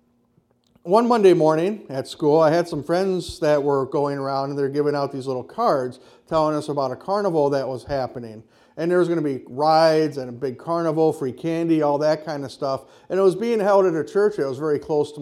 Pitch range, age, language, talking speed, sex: 135-160 Hz, 50-69, English, 235 wpm, male